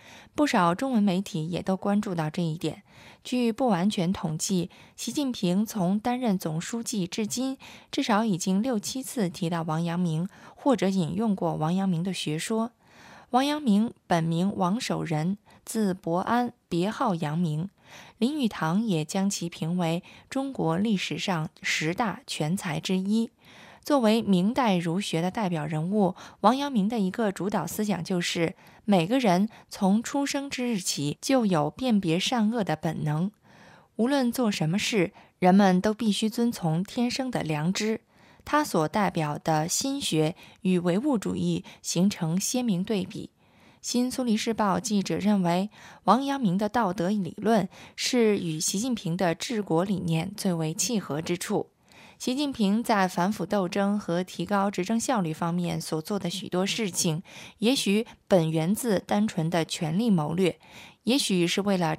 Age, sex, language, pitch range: 20-39, female, Chinese, 170-225 Hz